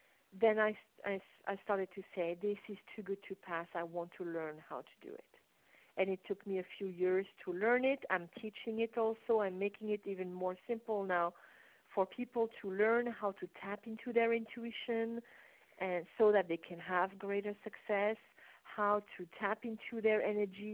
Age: 50-69